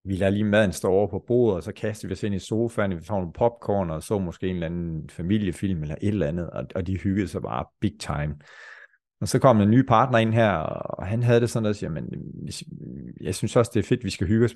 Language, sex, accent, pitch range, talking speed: Danish, male, native, 95-120 Hz, 265 wpm